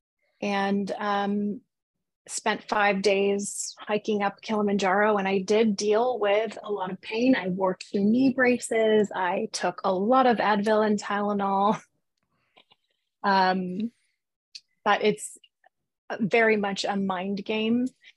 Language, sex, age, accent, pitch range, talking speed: English, female, 20-39, American, 195-215 Hz, 120 wpm